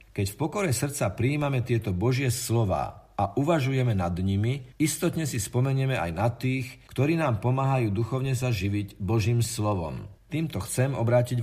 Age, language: 50-69, Slovak